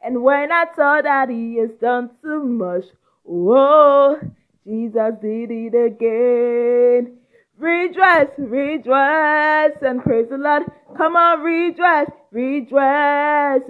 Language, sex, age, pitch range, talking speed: English, female, 20-39, 230-300 Hz, 110 wpm